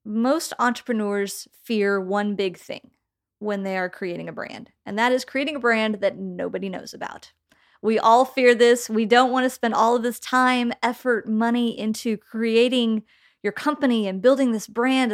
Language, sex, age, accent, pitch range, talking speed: English, female, 30-49, American, 205-260 Hz, 180 wpm